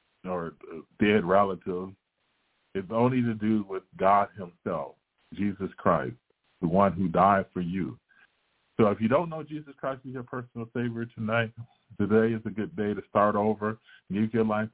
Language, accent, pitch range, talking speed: English, American, 95-110 Hz, 165 wpm